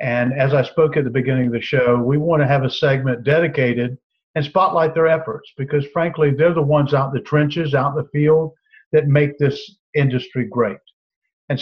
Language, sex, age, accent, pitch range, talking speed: English, male, 50-69, American, 125-150 Hz, 205 wpm